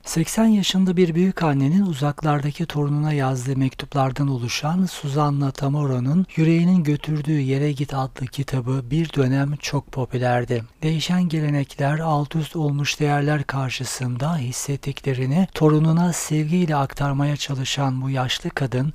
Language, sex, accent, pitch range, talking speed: Turkish, male, native, 135-155 Hz, 110 wpm